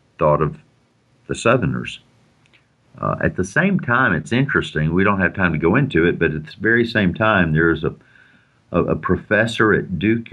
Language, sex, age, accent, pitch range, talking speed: English, male, 50-69, American, 75-110 Hz, 185 wpm